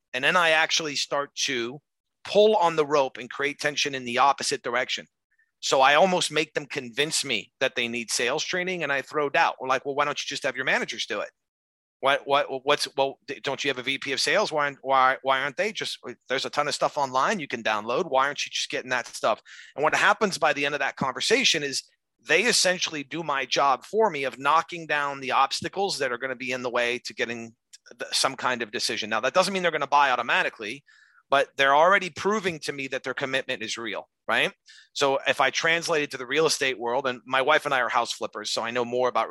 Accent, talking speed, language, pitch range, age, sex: American, 240 wpm, English, 125-160 Hz, 30-49, male